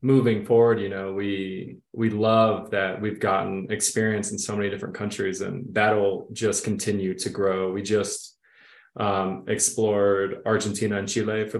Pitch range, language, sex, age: 95-110 Hz, English, male, 20-39